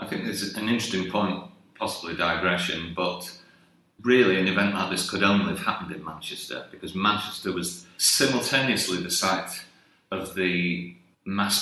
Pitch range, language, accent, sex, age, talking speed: 85-95 Hz, English, British, male, 40-59, 155 wpm